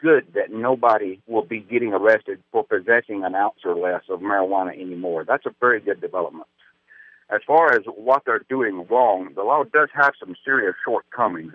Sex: male